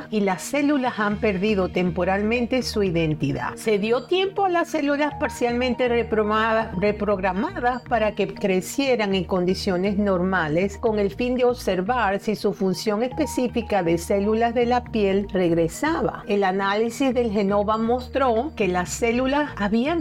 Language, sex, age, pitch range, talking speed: Spanish, female, 50-69, 185-235 Hz, 140 wpm